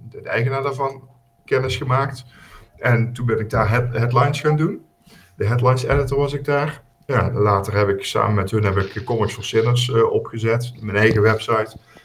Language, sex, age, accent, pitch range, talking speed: Dutch, male, 50-69, Dutch, 95-115 Hz, 190 wpm